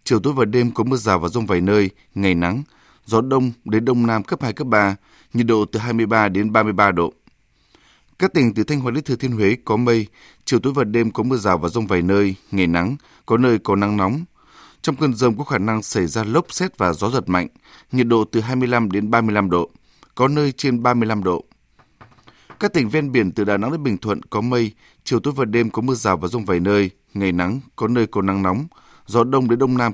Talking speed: 240 wpm